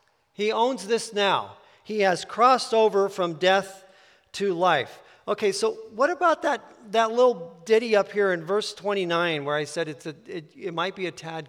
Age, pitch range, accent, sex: 50-69, 150-200 Hz, American, male